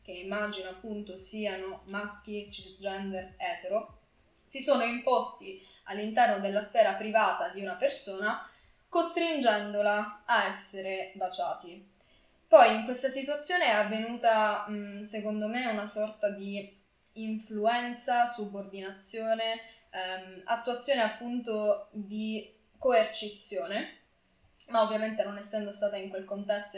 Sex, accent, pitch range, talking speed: female, native, 195-240 Hz, 105 wpm